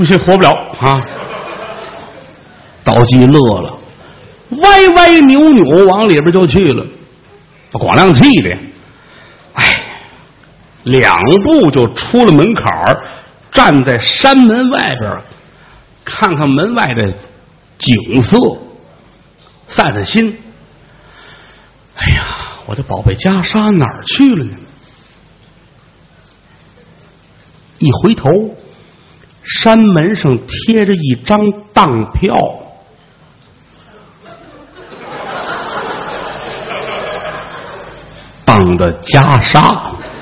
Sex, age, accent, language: male, 60-79, native, Chinese